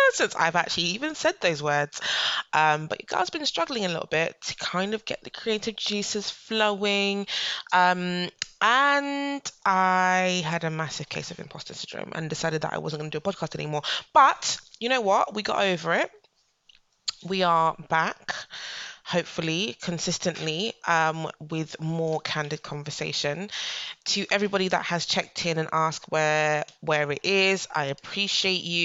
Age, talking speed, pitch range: 20-39, 165 wpm, 155-200 Hz